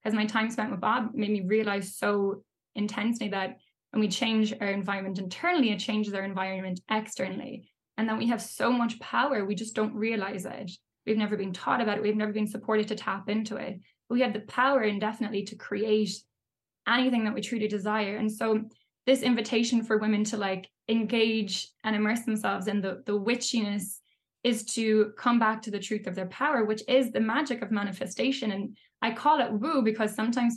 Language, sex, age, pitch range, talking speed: English, female, 10-29, 205-235 Hz, 200 wpm